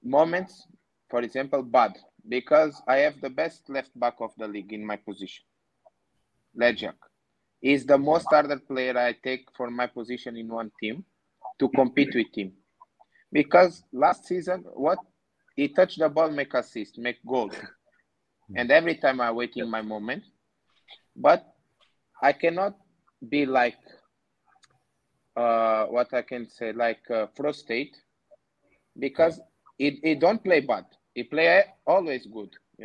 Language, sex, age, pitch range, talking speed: English, male, 20-39, 120-160 Hz, 145 wpm